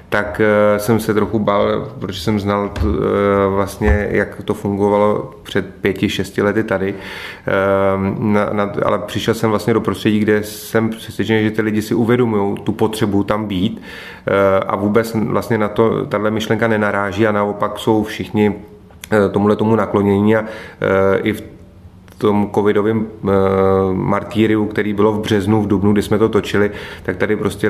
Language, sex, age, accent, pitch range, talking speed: Czech, male, 30-49, native, 100-110 Hz, 165 wpm